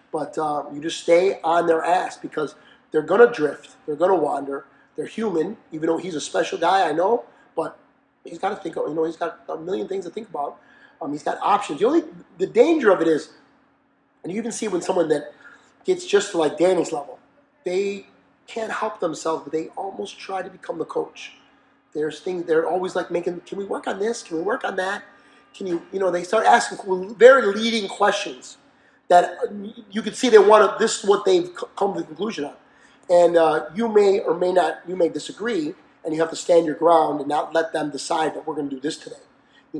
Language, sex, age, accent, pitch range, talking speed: English, male, 30-49, American, 160-225 Hz, 225 wpm